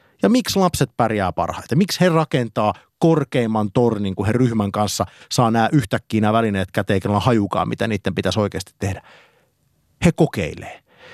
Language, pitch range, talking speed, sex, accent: Finnish, 105-155 Hz, 160 wpm, male, native